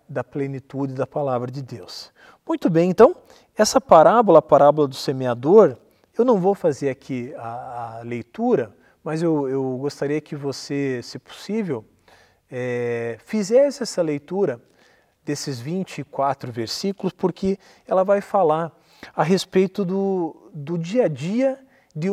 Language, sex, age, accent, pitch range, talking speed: Portuguese, male, 40-59, Brazilian, 140-200 Hz, 135 wpm